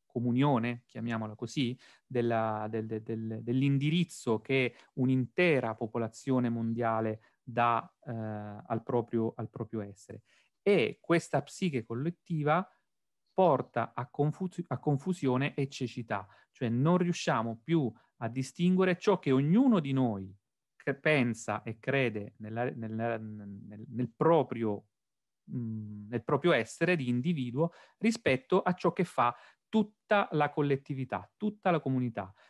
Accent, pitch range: native, 115-160 Hz